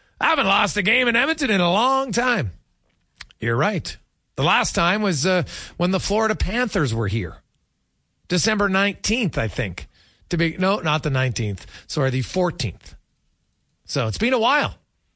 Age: 40-59